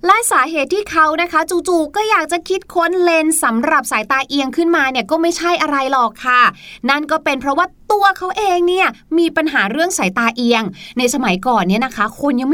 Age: 20-39